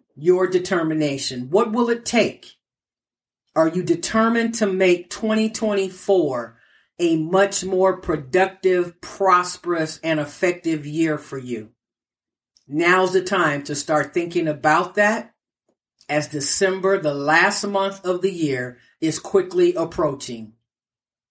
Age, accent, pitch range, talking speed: 50-69, American, 140-185 Hz, 115 wpm